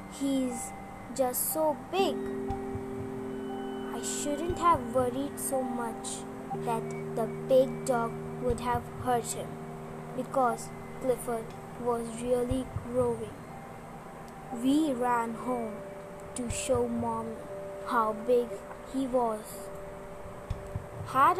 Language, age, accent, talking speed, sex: English, 20-39, Indian, 95 wpm, female